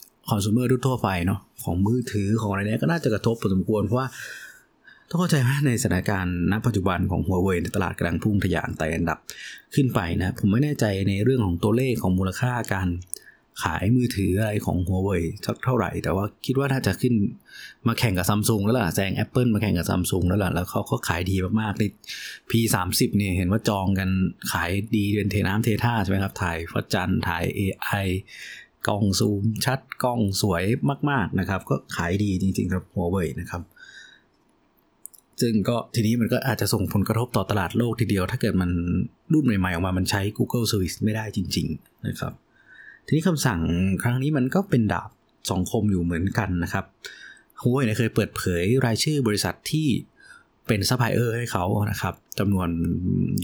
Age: 20-39